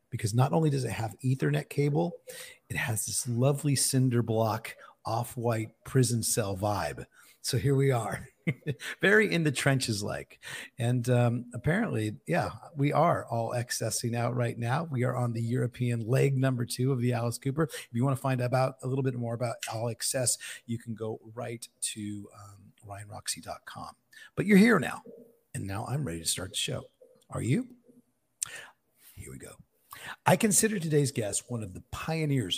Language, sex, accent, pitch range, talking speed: English, male, American, 115-145 Hz, 175 wpm